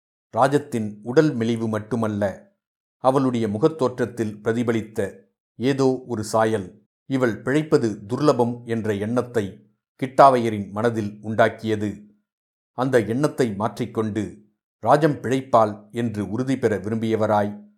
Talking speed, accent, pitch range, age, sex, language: 90 wpm, native, 105-125 Hz, 50-69, male, Tamil